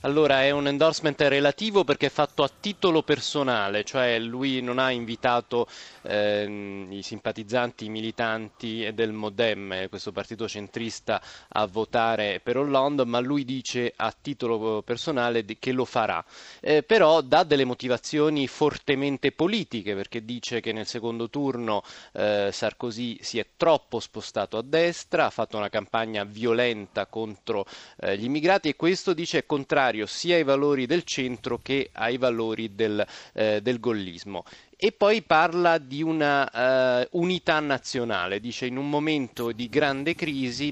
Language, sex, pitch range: Italian, male, 110-140 Hz